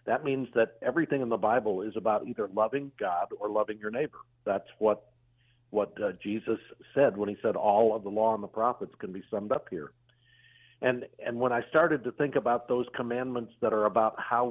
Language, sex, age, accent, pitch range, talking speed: English, male, 50-69, American, 115-135 Hz, 210 wpm